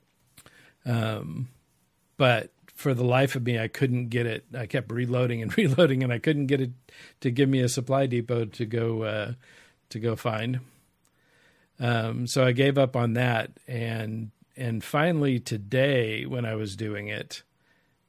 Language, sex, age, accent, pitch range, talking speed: English, male, 50-69, American, 110-130 Hz, 165 wpm